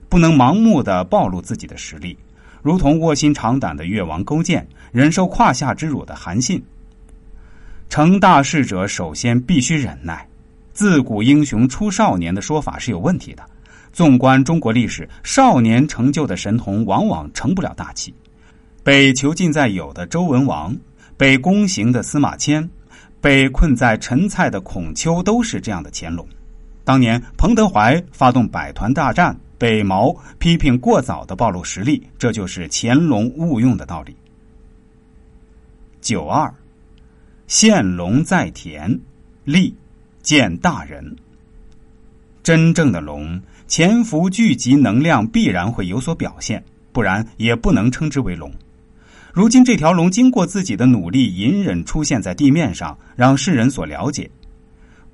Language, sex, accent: Chinese, male, native